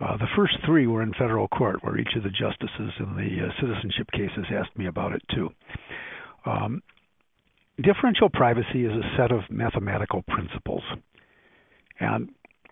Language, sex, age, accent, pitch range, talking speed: English, male, 50-69, American, 110-135 Hz, 155 wpm